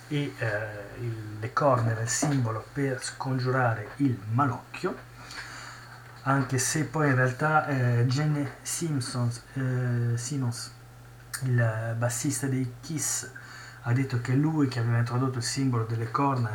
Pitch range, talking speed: 120-130 Hz, 130 wpm